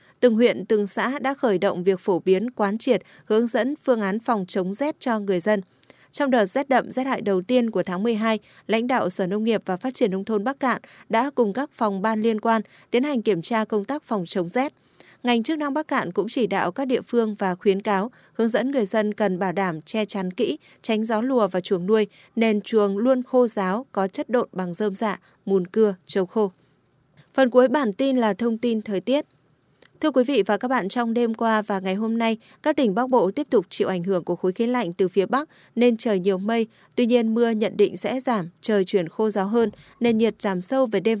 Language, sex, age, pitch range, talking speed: Vietnamese, female, 20-39, 195-245 Hz, 245 wpm